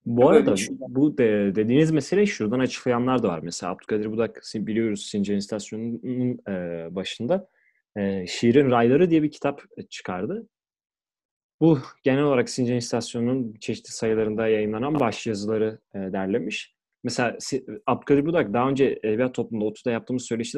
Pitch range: 105-135 Hz